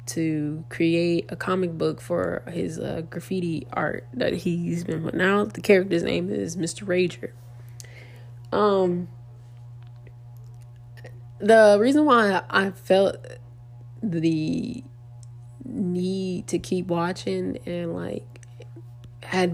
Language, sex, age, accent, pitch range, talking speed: English, female, 20-39, American, 120-180 Hz, 110 wpm